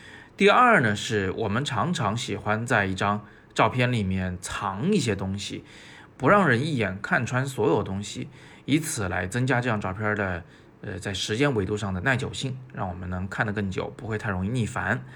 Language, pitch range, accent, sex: Chinese, 100-125 Hz, native, male